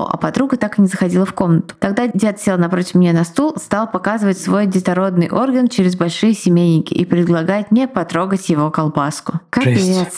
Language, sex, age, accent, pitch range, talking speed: Russian, female, 20-39, native, 185-225 Hz, 175 wpm